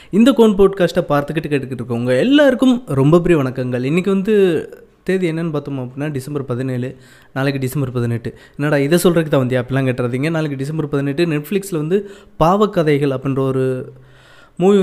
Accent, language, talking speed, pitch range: native, Tamil, 140 wpm, 140-180 Hz